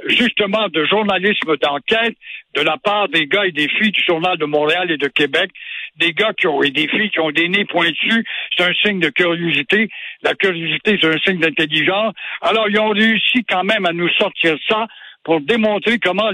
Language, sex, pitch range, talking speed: French, male, 175-235 Hz, 200 wpm